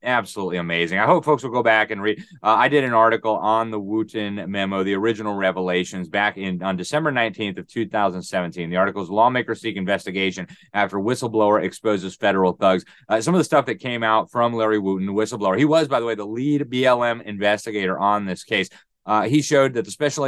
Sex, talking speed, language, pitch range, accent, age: male, 215 wpm, English, 100-120 Hz, American, 30-49